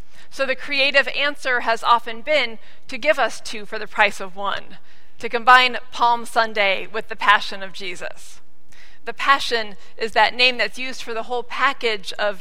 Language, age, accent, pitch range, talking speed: English, 40-59, American, 200-250 Hz, 180 wpm